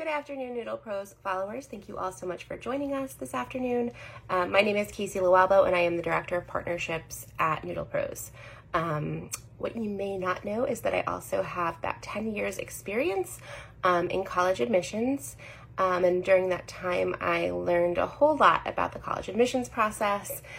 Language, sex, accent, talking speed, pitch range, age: English, female, American, 190 wpm, 175-225 Hz, 20-39